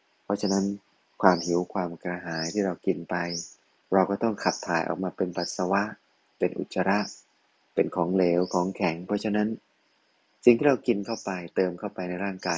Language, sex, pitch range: Thai, male, 85-100 Hz